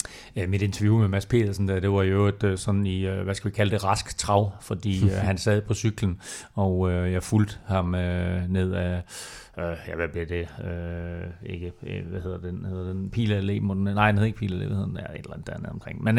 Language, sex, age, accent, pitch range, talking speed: Danish, male, 30-49, native, 95-120 Hz, 180 wpm